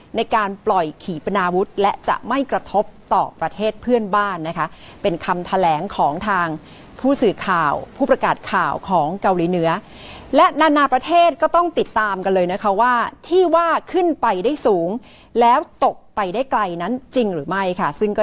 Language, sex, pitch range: Thai, female, 180-255 Hz